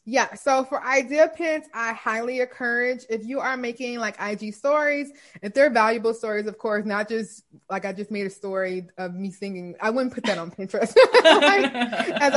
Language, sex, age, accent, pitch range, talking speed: English, female, 20-39, American, 215-255 Hz, 190 wpm